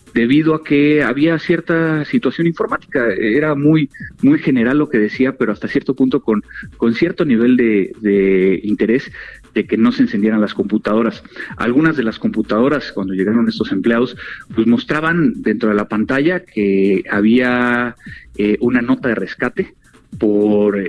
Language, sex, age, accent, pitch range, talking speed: Spanish, male, 40-59, Mexican, 100-145 Hz, 155 wpm